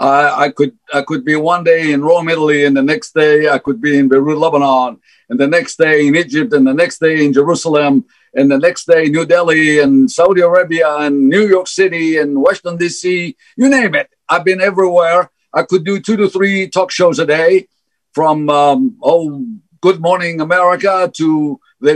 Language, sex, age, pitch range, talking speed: English, male, 50-69, 145-200 Hz, 200 wpm